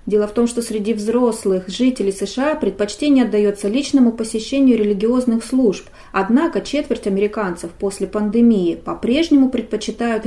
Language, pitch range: Russian, 200-255 Hz